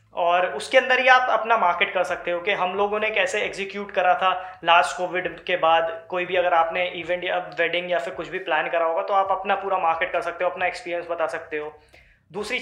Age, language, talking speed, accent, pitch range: 20-39, Hindi, 240 wpm, native, 175-215 Hz